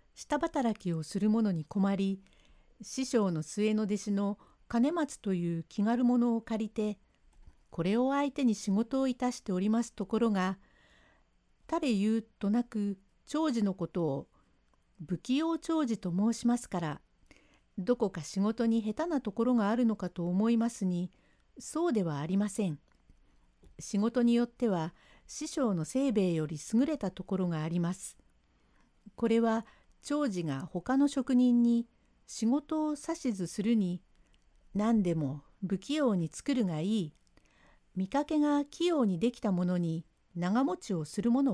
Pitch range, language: 175-245 Hz, Japanese